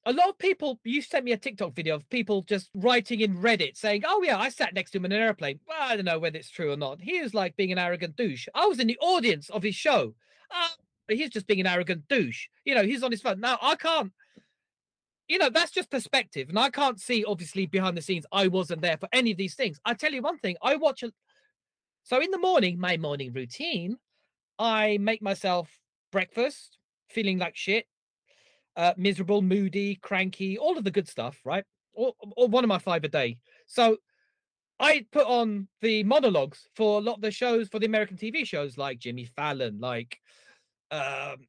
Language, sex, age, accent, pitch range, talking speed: English, male, 40-59, British, 185-255 Hz, 215 wpm